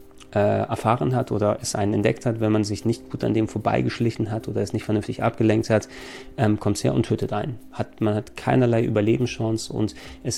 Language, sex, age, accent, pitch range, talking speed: German, male, 30-49, German, 105-120 Hz, 210 wpm